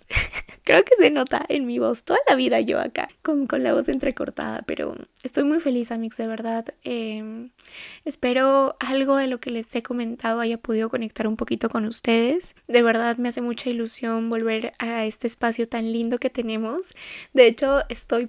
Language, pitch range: Spanish, 230-275 Hz